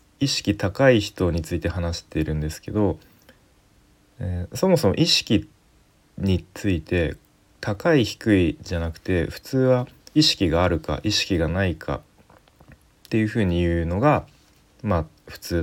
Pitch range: 85-110 Hz